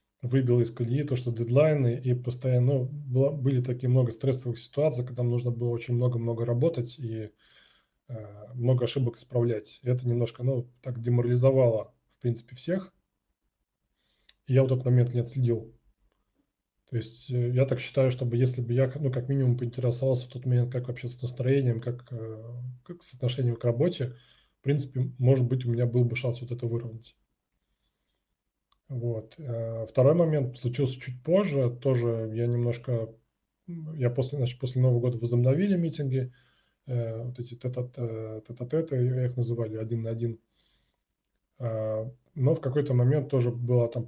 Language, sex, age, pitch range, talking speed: Russian, male, 20-39, 120-130 Hz, 150 wpm